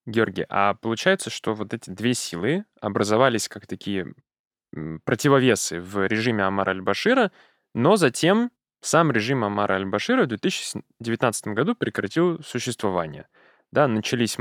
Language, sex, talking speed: Russian, male, 115 wpm